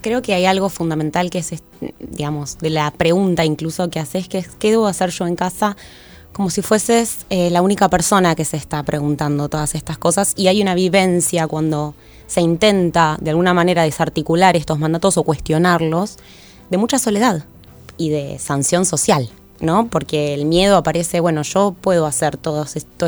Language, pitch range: Spanish, 150-180 Hz